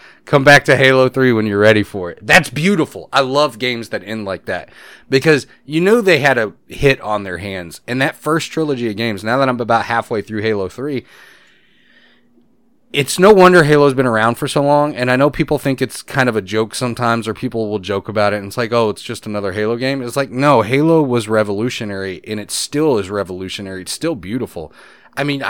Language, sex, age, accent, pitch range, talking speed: English, male, 30-49, American, 105-135 Hz, 220 wpm